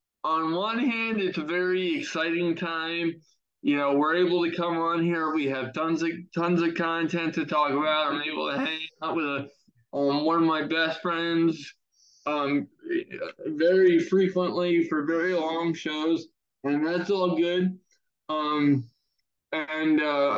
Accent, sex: American, male